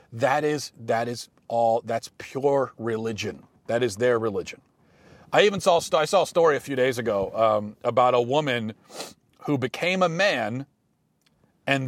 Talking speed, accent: 160 wpm, American